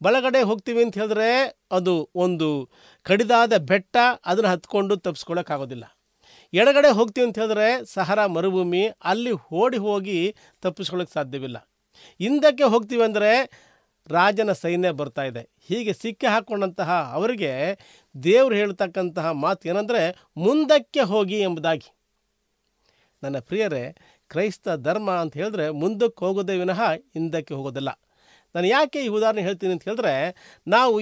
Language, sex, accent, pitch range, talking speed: Kannada, male, native, 180-245 Hz, 110 wpm